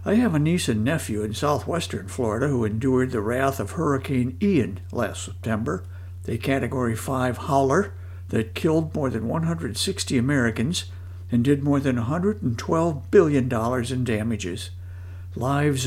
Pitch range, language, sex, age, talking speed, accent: 95-140 Hz, English, male, 60-79, 140 wpm, American